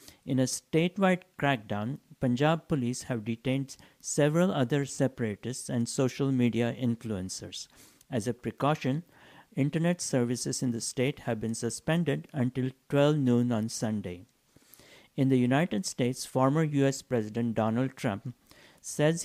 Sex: male